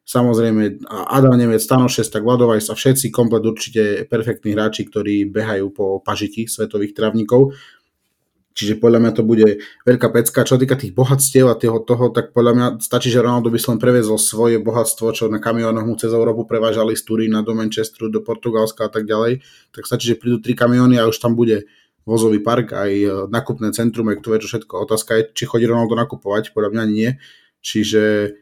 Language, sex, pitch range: Slovak, male, 110-125 Hz